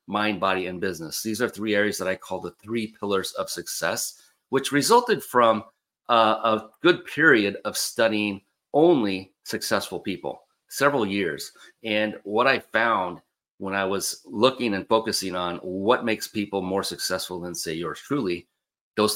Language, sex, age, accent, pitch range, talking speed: English, male, 40-59, American, 95-110 Hz, 160 wpm